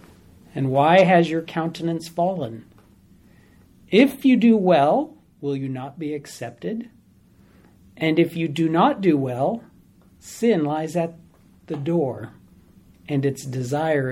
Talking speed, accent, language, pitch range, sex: 125 wpm, American, English, 125-170 Hz, male